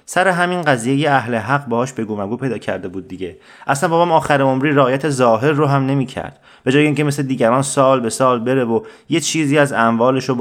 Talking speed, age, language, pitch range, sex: 215 wpm, 30-49, Persian, 110-135 Hz, male